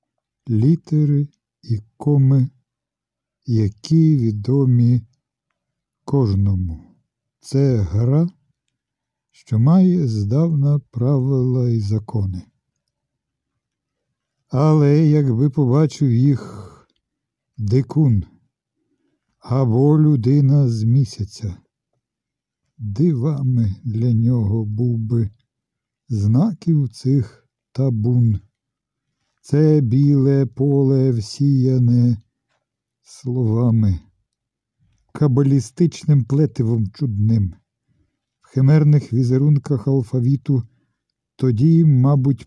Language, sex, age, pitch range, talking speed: Ukrainian, male, 50-69, 115-140 Hz, 65 wpm